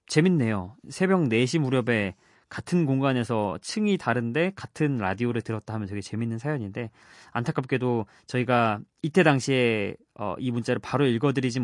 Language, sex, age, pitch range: Korean, male, 20-39, 110-160 Hz